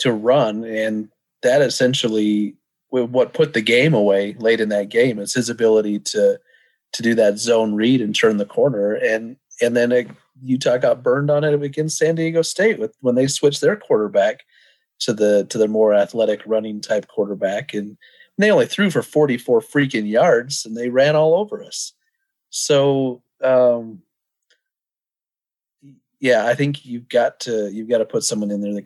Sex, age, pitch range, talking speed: male, 30-49, 105-145 Hz, 175 wpm